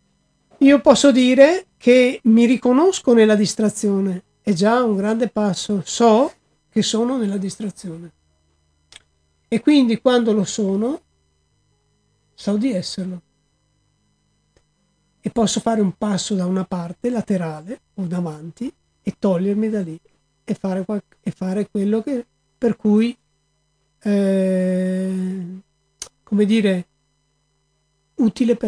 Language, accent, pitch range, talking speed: Italian, native, 175-225 Hz, 105 wpm